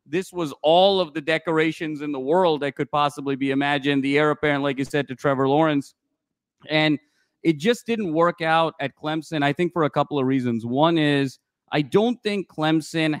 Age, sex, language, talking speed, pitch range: 30-49, male, English, 200 wpm, 145-170 Hz